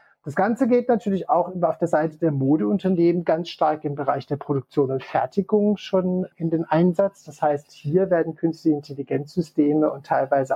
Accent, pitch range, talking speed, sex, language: German, 145-185 Hz, 170 wpm, male, German